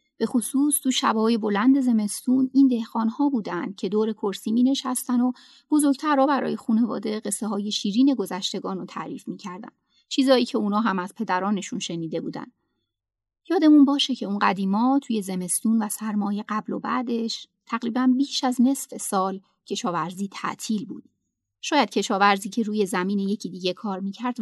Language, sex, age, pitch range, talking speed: Persian, female, 30-49, 195-260 Hz, 150 wpm